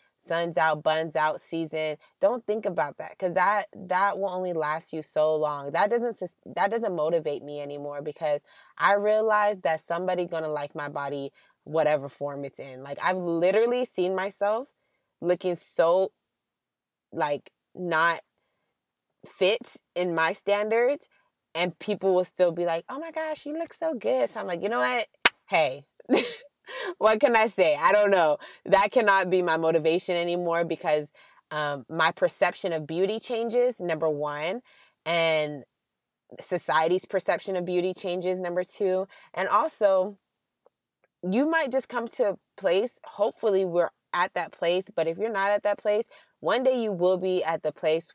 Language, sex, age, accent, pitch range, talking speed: English, female, 20-39, American, 155-205 Hz, 160 wpm